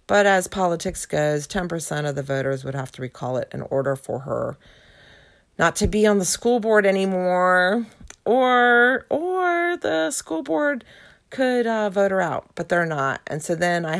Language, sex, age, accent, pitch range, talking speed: English, female, 40-59, American, 135-210 Hz, 180 wpm